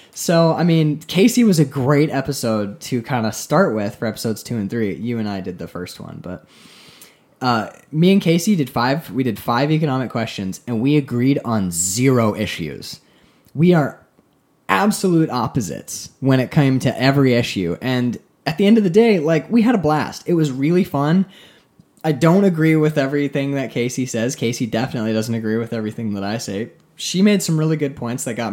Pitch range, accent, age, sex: 115-165 Hz, American, 20-39, male